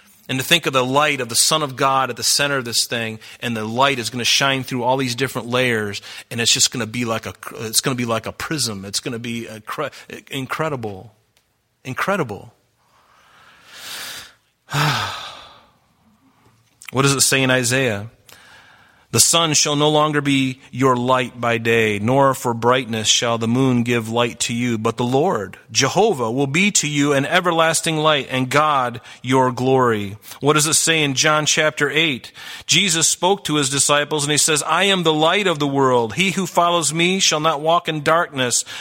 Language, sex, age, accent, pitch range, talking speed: English, male, 30-49, American, 120-155 Hz, 190 wpm